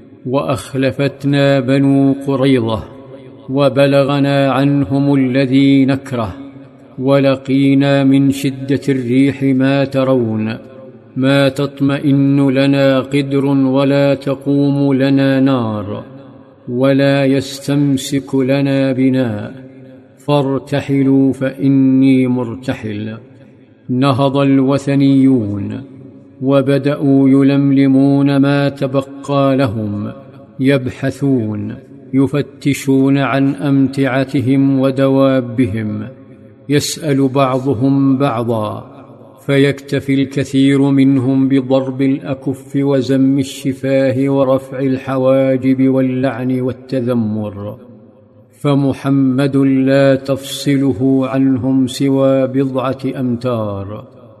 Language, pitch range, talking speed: Arabic, 130-140 Hz, 65 wpm